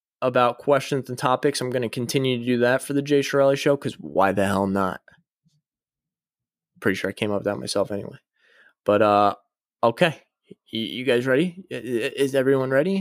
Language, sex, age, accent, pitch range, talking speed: English, male, 20-39, American, 120-165 Hz, 185 wpm